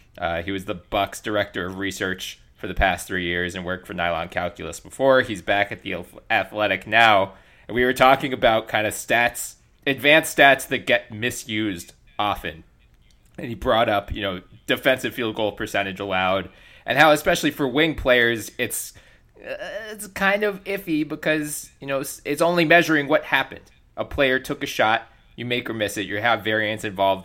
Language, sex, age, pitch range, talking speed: English, male, 20-39, 105-155 Hz, 185 wpm